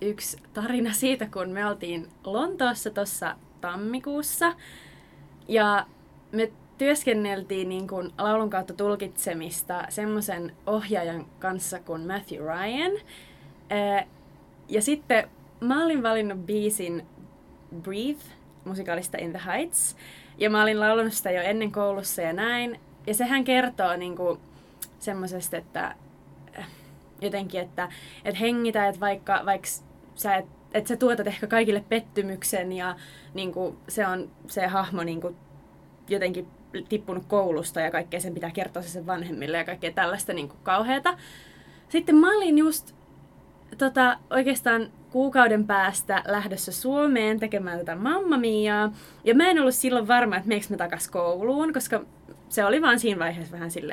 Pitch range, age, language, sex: 180-240 Hz, 20-39, Finnish, female